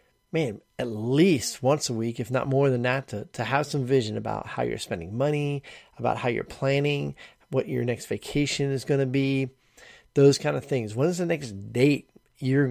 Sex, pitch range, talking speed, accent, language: male, 115-150 Hz, 200 wpm, American, English